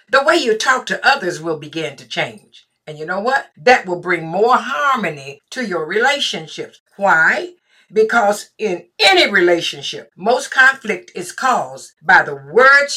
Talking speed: 155 wpm